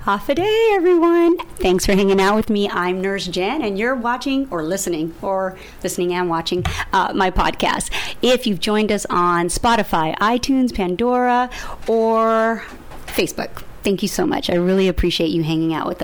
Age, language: 40-59, English